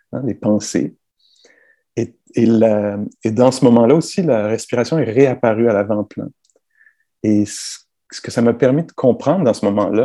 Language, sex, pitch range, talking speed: English, male, 115-165 Hz, 175 wpm